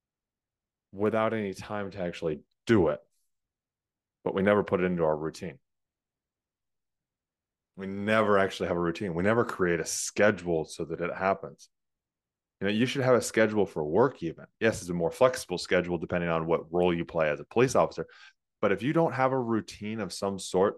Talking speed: 190 wpm